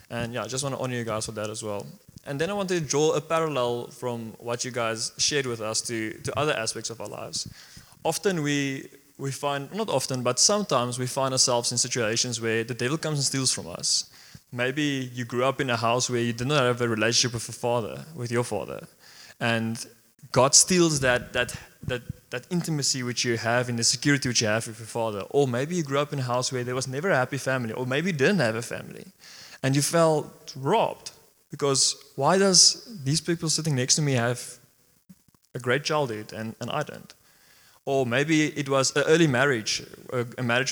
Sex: male